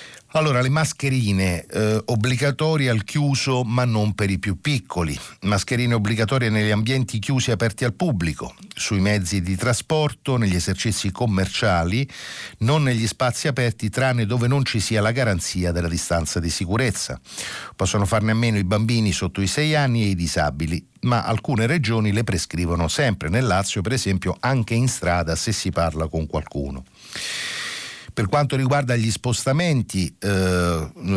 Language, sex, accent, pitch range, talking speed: Italian, male, native, 95-125 Hz, 155 wpm